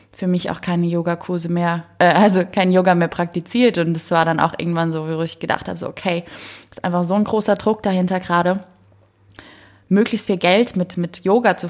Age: 20-39